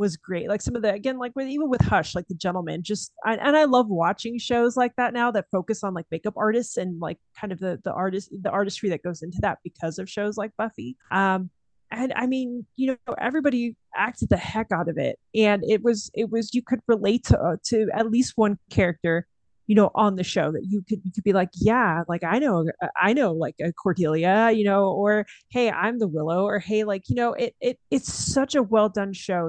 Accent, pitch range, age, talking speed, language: American, 175-225 Hz, 30-49, 240 wpm, English